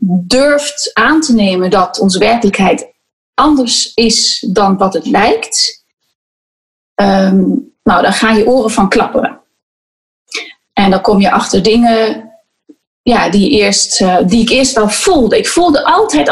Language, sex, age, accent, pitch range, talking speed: Dutch, female, 30-49, Dutch, 200-255 Hz, 135 wpm